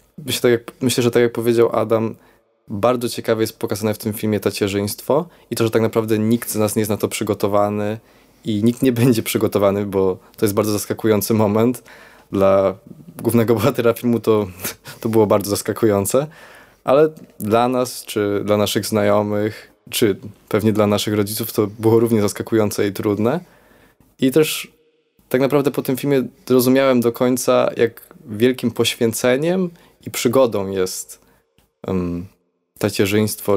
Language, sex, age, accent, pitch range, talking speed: Polish, male, 20-39, native, 105-120 Hz, 145 wpm